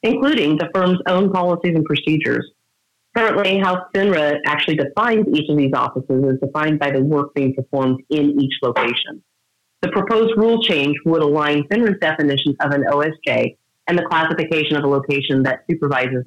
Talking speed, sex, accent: 165 wpm, female, American